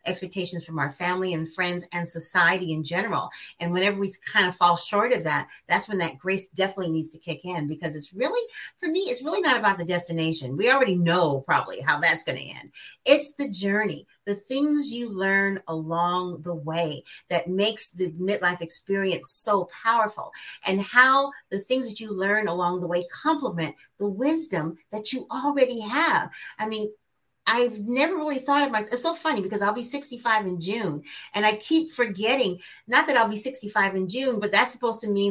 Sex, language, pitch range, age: female, English, 180-245 Hz, 40-59